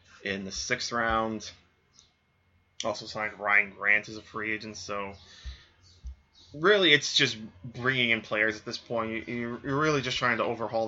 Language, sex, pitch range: English, male, 95-135 Hz